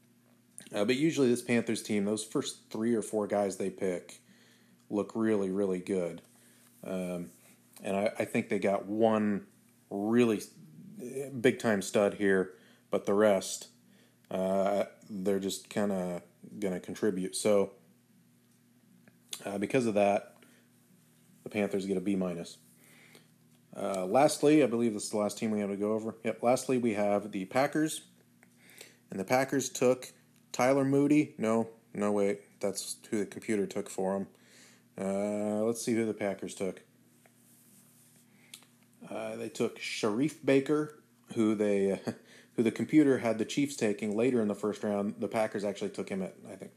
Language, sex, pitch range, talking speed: English, male, 95-115 Hz, 155 wpm